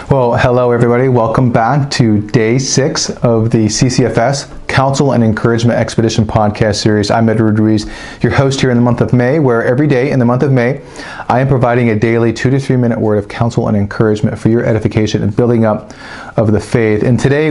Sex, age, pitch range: male, 40-59, 110-130 Hz